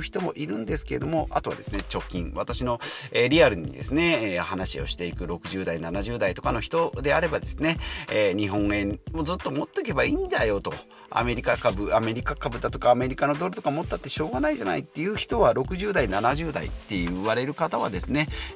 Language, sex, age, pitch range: Japanese, male, 40-59, 95-165 Hz